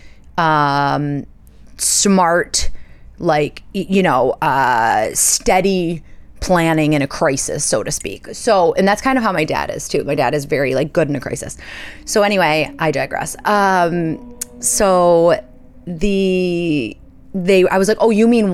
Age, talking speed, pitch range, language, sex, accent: 20-39, 150 wpm, 155-215 Hz, English, female, American